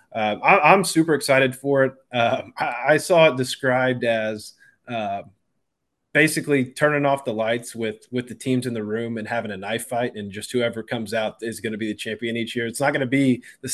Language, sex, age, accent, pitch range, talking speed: English, male, 20-39, American, 115-145 Hz, 225 wpm